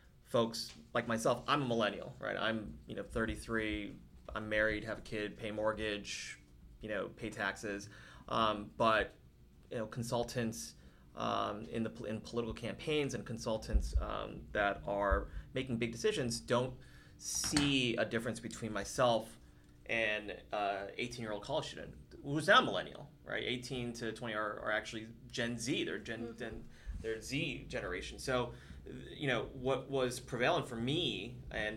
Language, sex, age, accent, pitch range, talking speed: English, male, 30-49, American, 105-120 Hz, 150 wpm